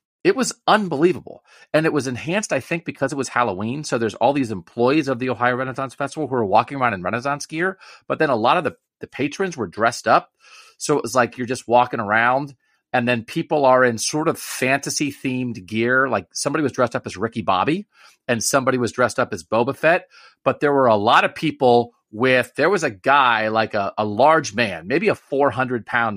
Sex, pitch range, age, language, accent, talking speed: male, 120-155 Hz, 40-59, English, American, 215 wpm